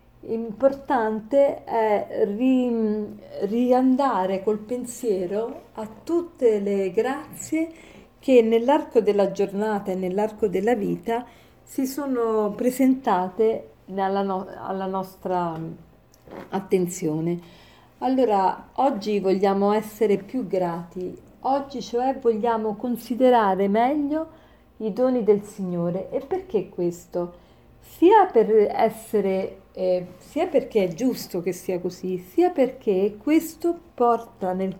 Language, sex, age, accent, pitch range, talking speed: Italian, female, 40-59, native, 190-255 Hz, 100 wpm